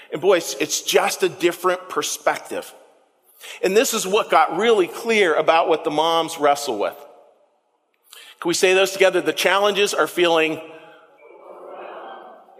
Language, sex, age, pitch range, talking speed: English, male, 40-59, 160-230 Hz, 140 wpm